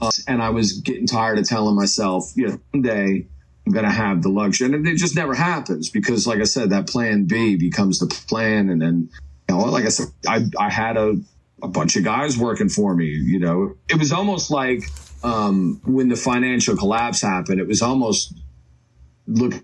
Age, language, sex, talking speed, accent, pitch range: 40-59, English, male, 210 wpm, American, 80-115 Hz